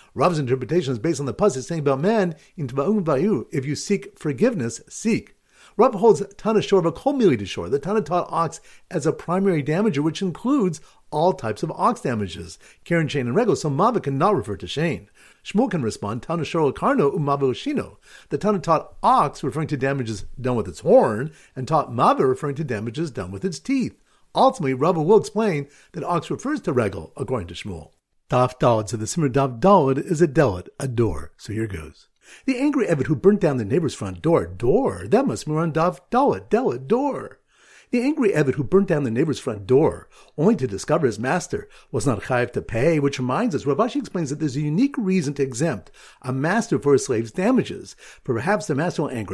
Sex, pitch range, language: male, 135-195 Hz, English